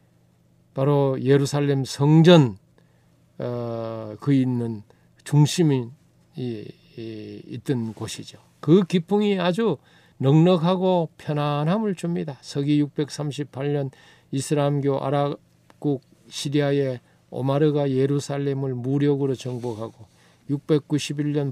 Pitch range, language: 130-185 Hz, Korean